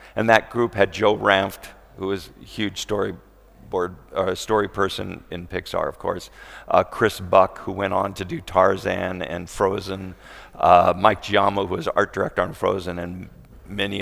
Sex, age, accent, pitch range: male, 50-69, American, 95-115 Hz